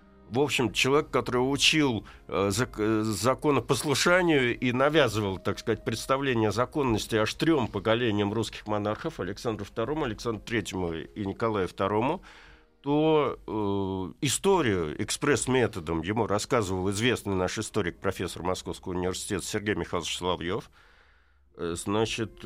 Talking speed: 120 wpm